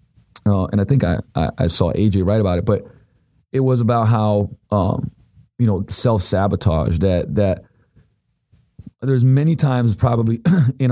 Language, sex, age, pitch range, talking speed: English, male, 30-49, 100-125 Hz, 155 wpm